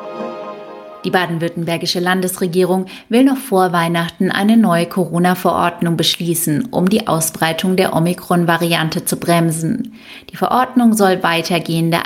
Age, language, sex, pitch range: 30-49, German, female, 165-200 Hz